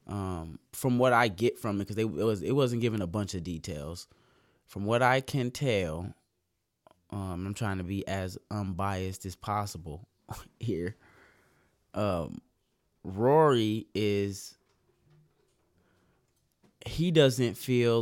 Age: 20-39